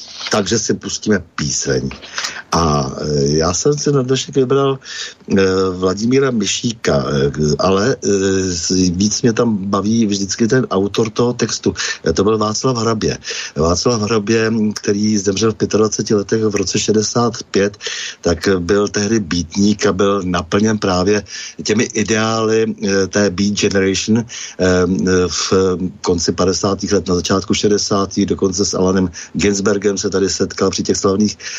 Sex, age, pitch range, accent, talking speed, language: male, 60-79, 100-120 Hz, native, 135 wpm, Czech